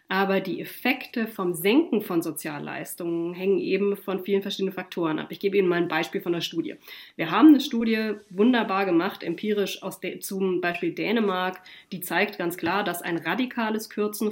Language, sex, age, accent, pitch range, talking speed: German, female, 30-49, German, 185-225 Hz, 180 wpm